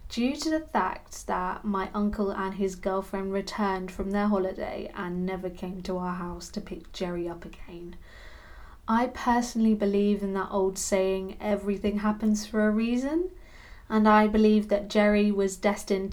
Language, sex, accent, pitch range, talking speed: English, female, British, 185-210 Hz, 165 wpm